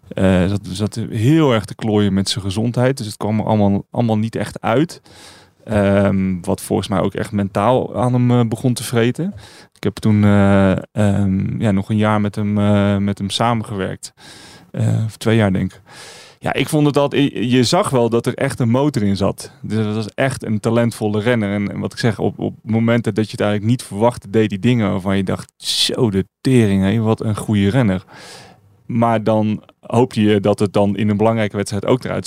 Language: Dutch